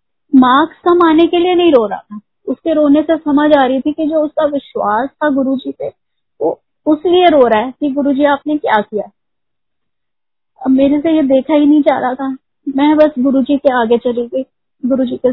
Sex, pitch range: female, 245-290 Hz